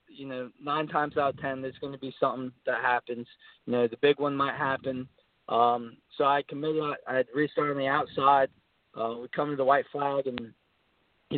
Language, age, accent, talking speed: English, 20-39, American, 205 wpm